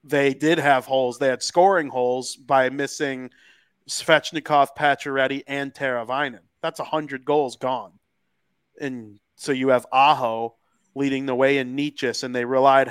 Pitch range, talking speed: 125-150 Hz, 145 wpm